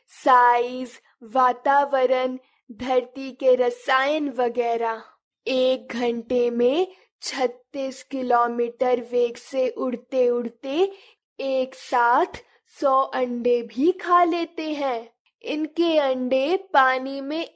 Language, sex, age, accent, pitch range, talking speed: Hindi, female, 20-39, native, 240-330 Hz, 90 wpm